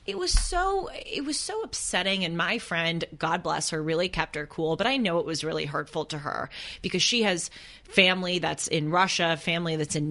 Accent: American